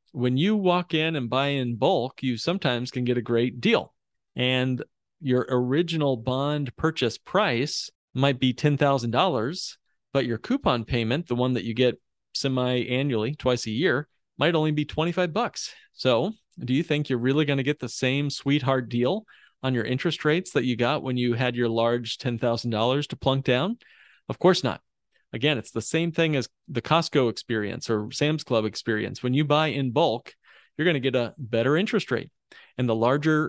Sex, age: male, 40-59